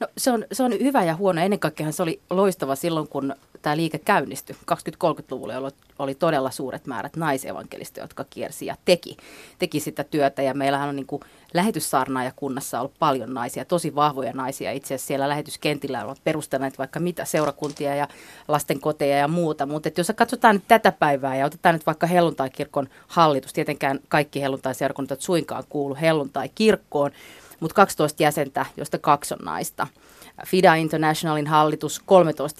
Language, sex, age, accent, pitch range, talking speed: Finnish, female, 30-49, native, 140-170 Hz, 160 wpm